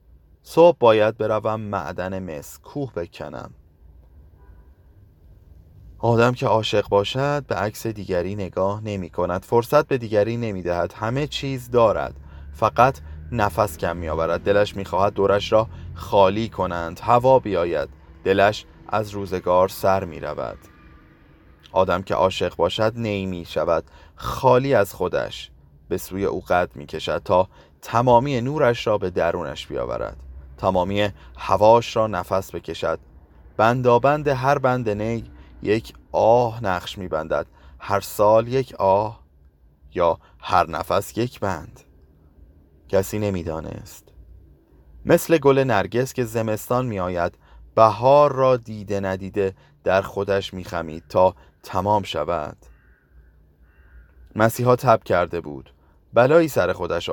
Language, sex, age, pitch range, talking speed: Persian, male, 30-49, 80-115 Hz, 120 wpm